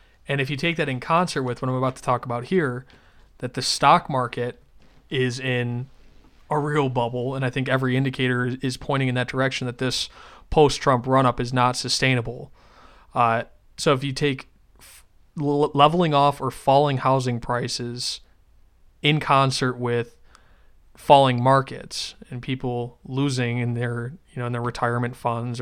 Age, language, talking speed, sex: 20-39, English, 160 wpm, male